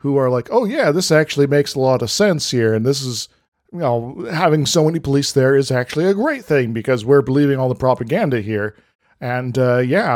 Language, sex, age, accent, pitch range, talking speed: English, male, 40-59, American, 125-150 Hz, 225 wpm